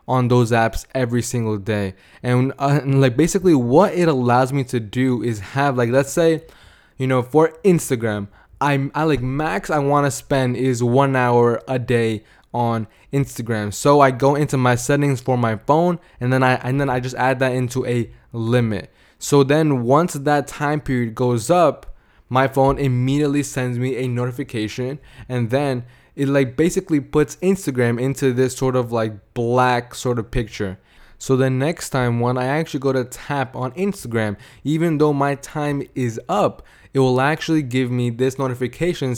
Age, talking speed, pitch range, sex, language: 20-39, 180 wpm, 120-140 Hz, male, English